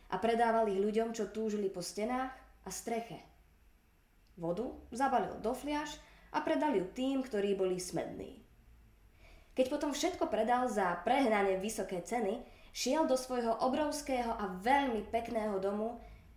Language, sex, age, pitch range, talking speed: Slovak, female, 20-39, 175-240 Hz, 130 wpm